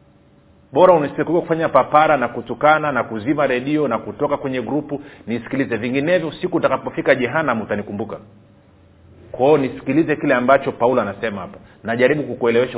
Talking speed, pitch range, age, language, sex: 135 wpm, 115-150 Hz, 40-59, Swahili, male